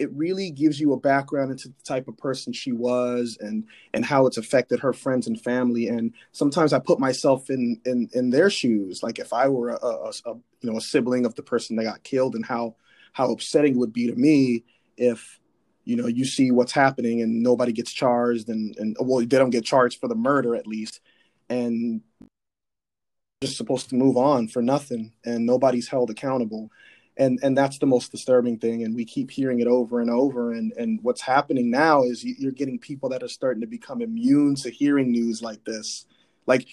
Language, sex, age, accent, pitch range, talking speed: English, male, 30-49, American, 120-135 Hz, 210 wpm